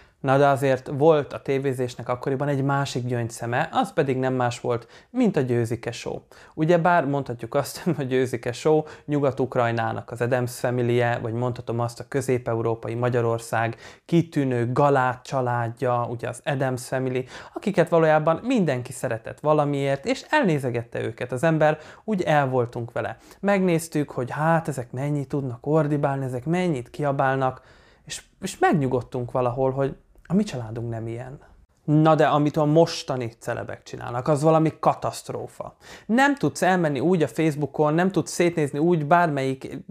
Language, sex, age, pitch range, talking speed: Hungarian, male, 20-39, 130-165 Hz, 145 wpm